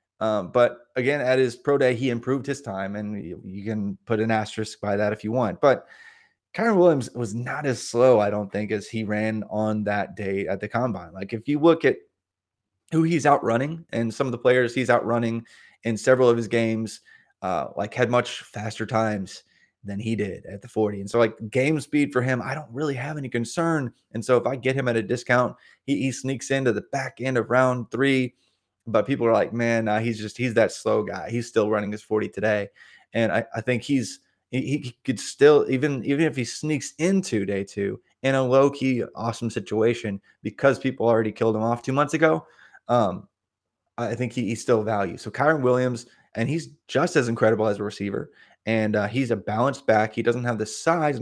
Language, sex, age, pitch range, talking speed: English, male, 20-39, 110-130 Hz, 215 wpm